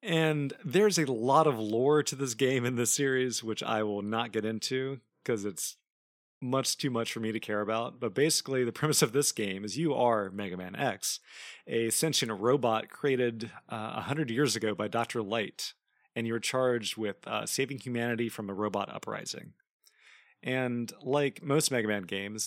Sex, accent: male, American